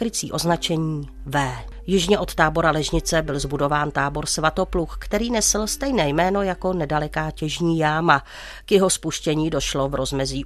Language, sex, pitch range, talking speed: Czech, female, 150-180 Hz, 140 wpm